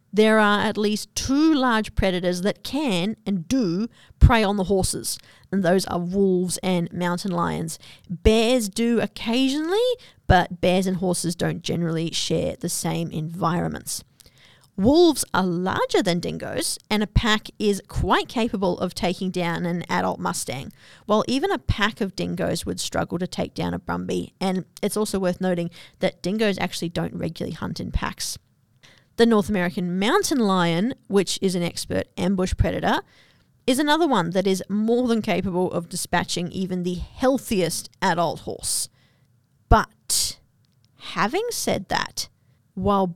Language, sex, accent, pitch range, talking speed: English, female, Australian, 175-220 Hz, 150 wpm